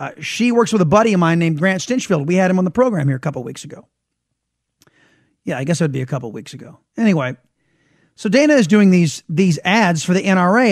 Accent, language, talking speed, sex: American, English, 245 wpm, male